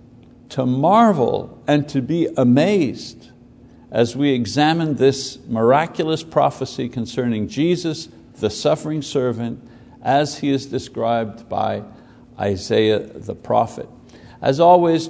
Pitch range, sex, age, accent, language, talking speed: 125-160 Hz, male, 60-79, American, English, 105 wpm